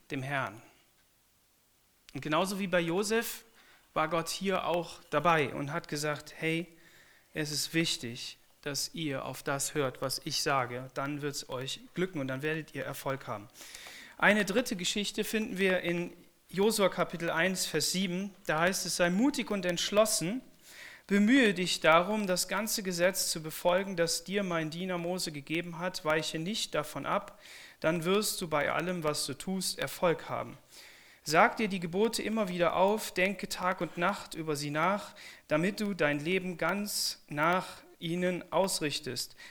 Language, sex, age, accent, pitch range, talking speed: German, male, 40-59, German, 150-190 Hz, 160 wpm